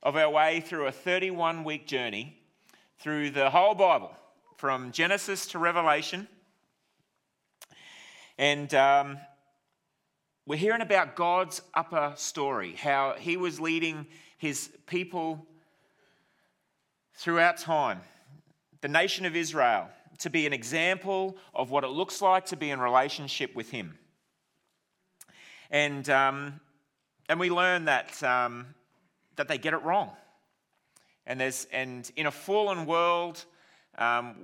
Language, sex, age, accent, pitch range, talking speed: English, male, 30-49, Australian, 130-170 Hz, 120 wpm